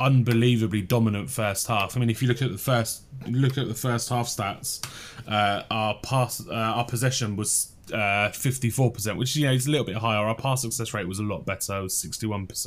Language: English